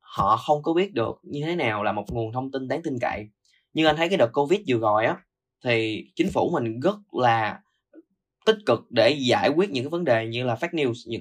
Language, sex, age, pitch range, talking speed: Vietnamese, male, 10-29, 115-150 Hz, 240 wpm